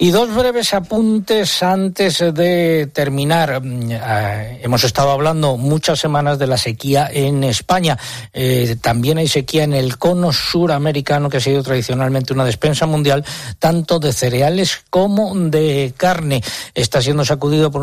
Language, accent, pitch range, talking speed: Spanish, Spanish, 130-170 Hz, 145 wpm